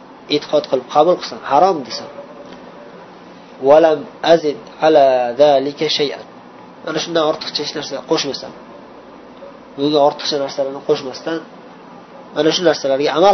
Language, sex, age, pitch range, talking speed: Bulgarian, male, 30-49, 140-165 Hz, 70 wpm